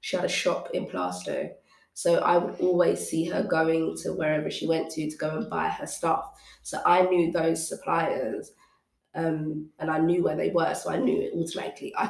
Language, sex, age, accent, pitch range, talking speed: English, female, 20-39, British, 165-180 Hz, 210 wpm